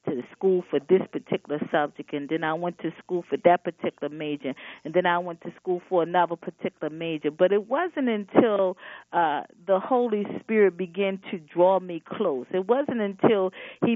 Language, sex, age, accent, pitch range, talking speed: English, female, 40-59, American, 180-220 Hz, 185 wpm